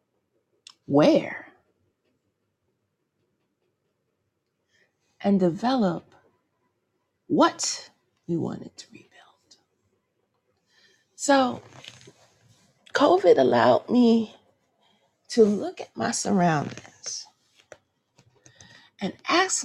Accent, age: American, 40-59